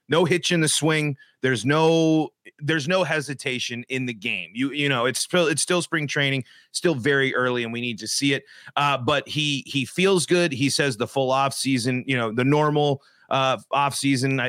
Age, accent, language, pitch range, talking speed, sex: 30-49, American, English, 130-155 Hz, 205 wpm, male